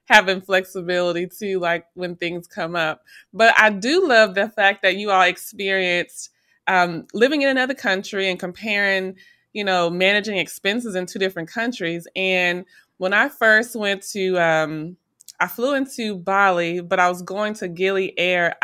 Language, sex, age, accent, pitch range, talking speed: English, female, 20-39, American, 190-255 Hz, 160 wpm